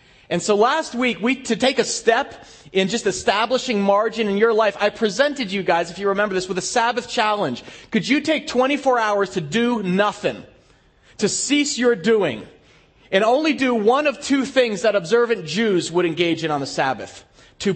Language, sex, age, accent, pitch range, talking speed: English, male, 30-49, American, 195-240 Hz, 195 wpm